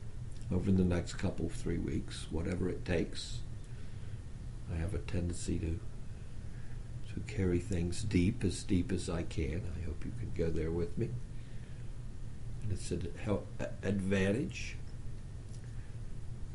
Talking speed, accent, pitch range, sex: 140 wpm, American, 105-120 Hz, male